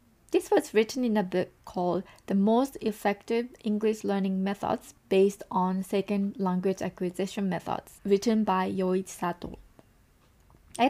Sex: female